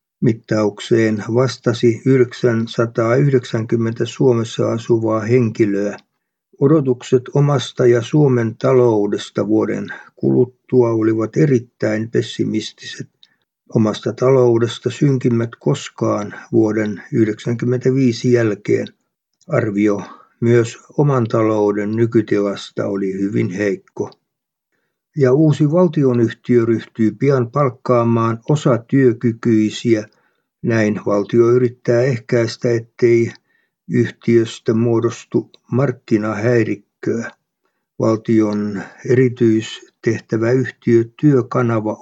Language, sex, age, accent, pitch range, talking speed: Finnish, male, 60-79, native, 110-125 Hz, 70 wpm